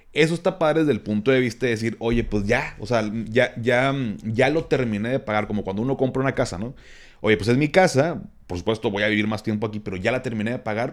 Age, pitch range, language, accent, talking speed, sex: 30-49, 105-135 Hz, Spanish, Mexican, 260 wpm, male